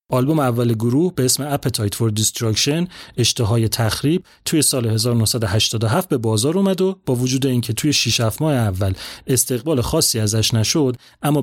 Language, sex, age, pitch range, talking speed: Persian, male, 30-49, 110-140 Hz, 150 wpm